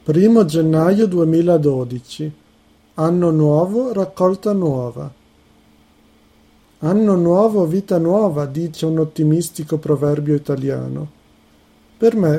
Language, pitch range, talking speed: Italian, 145-185 Hz, 85 wpm